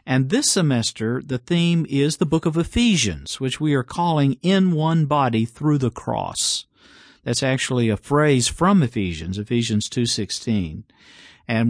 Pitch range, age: 120-160 Hz, 50-69